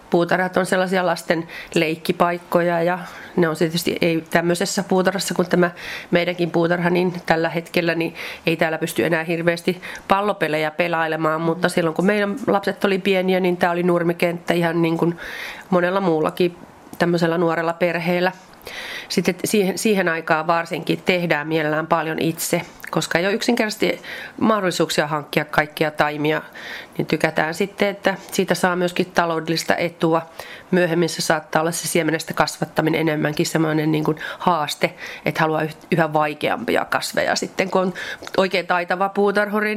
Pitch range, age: 160-185 Hz, 30-49